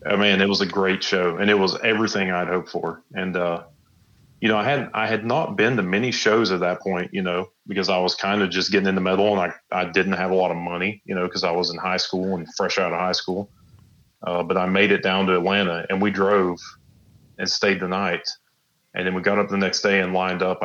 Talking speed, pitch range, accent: 265 wpm, 90-100 Hz, American